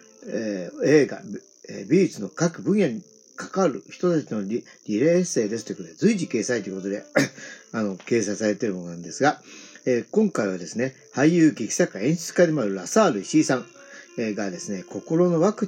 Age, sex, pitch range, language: 50-69, male, 115-185 Hz, Japanese